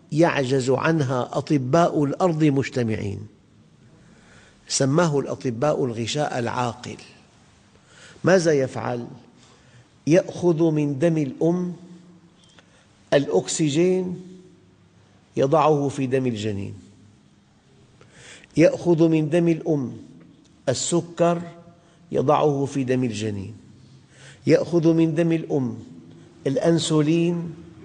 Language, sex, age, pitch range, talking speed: Arabic, male, 50-69, 120-165 Hz, 75 wpm